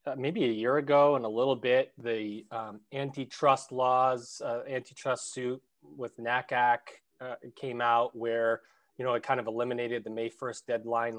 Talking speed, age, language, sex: 170 wpm, 20-39, English, male